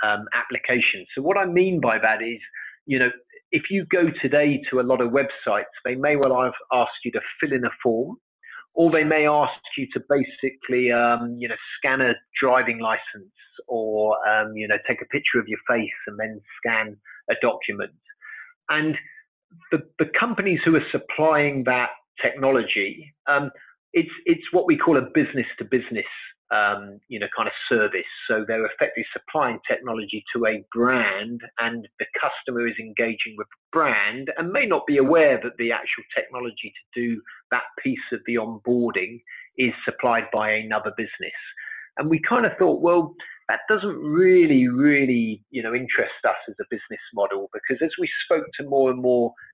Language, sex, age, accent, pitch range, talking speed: English, male, 40-59, British, 115-175 Hz, 175 wpm